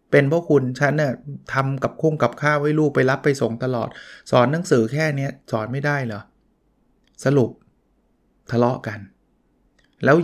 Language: Thai